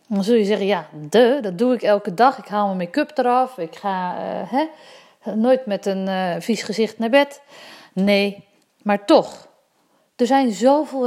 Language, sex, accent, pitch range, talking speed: English, female, Dutch, 195-265 Hz, 175 wpm